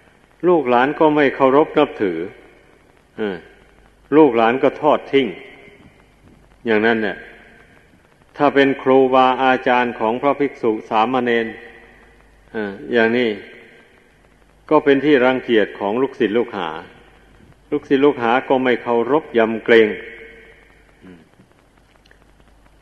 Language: Thai